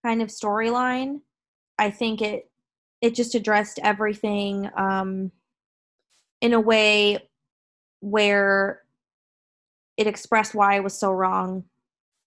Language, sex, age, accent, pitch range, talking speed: English, female, 20-39, American, 195-230 Hz, 110 wpm